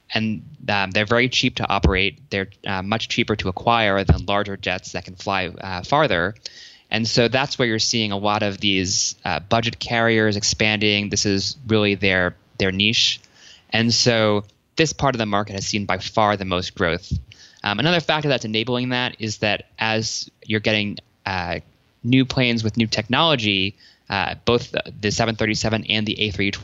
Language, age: English, 20-39